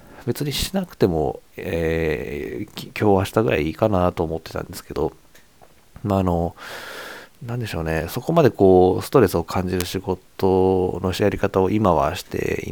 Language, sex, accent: Japanese, male, native